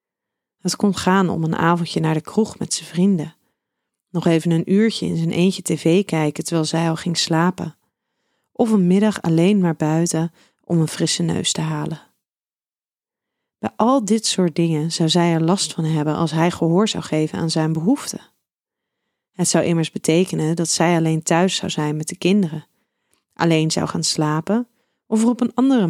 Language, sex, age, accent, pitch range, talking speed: Dutch, female, 30-49, Dutch, 160-205 Hz, 185 wpm